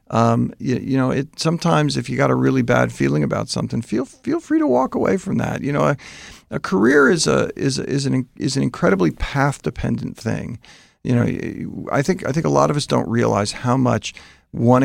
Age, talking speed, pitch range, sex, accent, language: 40-59, 215 wpm, 105-155 Hz, male, American, English